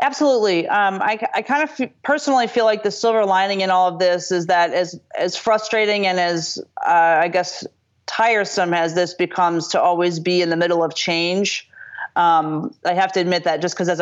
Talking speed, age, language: 205 wpm, 30-49, English